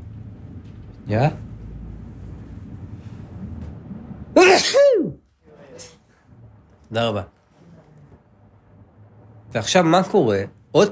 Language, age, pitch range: Hebrew, 40-59, 100-150 Hz